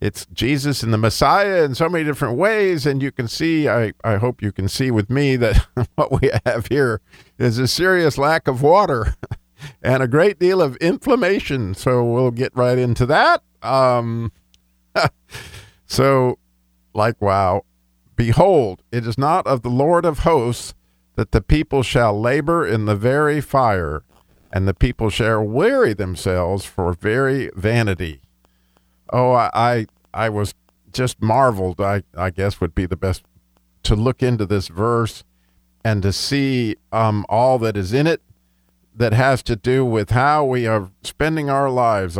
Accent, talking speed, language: American, 165 wpm, English